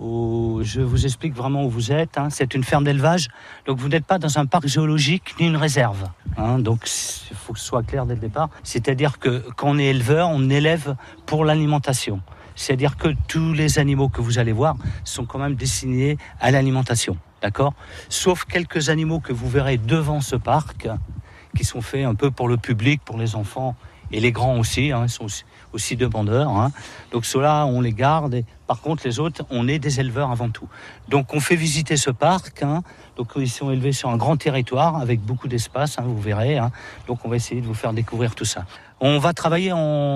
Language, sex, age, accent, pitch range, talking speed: French, male, 50-69, French, 120-150 Hz, 210 wpm